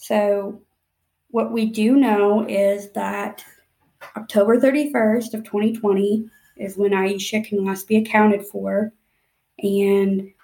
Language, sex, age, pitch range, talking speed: English, female, 20-39, 200-220 Hz, 115 wpm